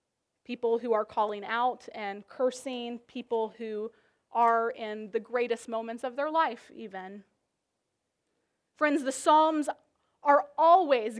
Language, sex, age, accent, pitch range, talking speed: English, female, 30-49, American, 230-275 Hz, 125 wpm